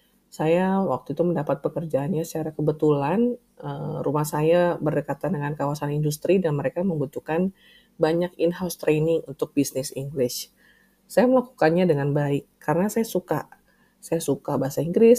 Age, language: 30-49, Indonesian